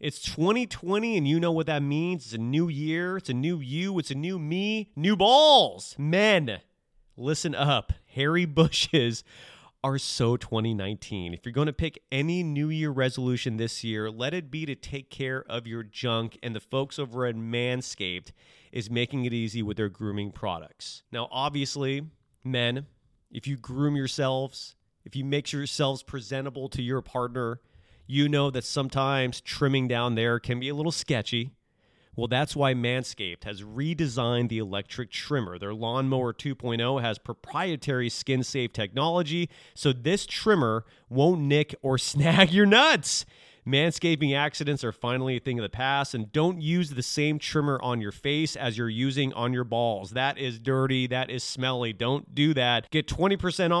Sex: male